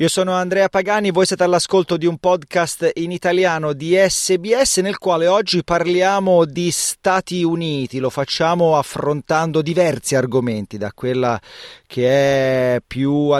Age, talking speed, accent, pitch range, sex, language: 30-49, 145 wpm, native, 130-160 Hz, male, Italian